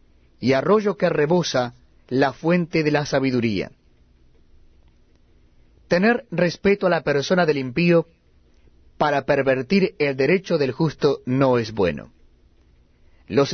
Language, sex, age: Spanish, male, 40-59